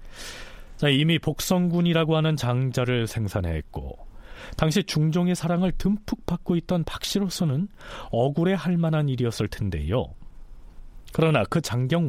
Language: Korean